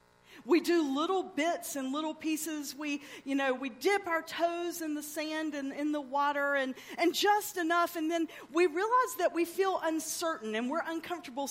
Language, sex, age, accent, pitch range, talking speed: English, female, 40-59, American, 230-340 Hz, 190 wpm